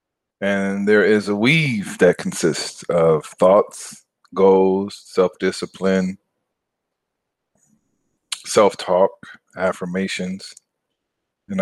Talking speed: 70 wpm